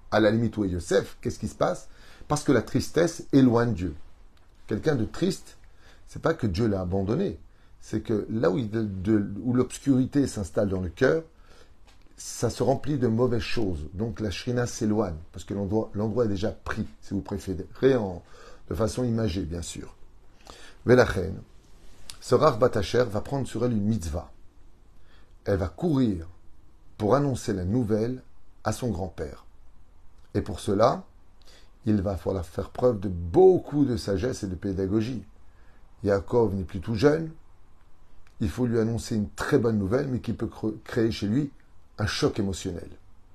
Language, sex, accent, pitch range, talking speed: French, male, French, 90-120 Hz, 165 wpm